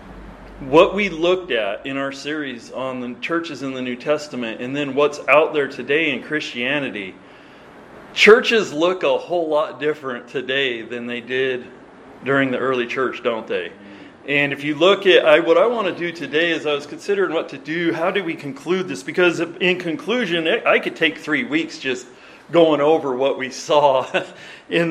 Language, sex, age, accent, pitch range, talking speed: English, male, 40-59, American, 140-170 Hz, 185 wpm